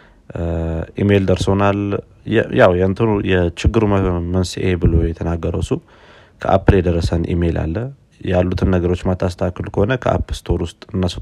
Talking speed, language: 105 wpm, Amharic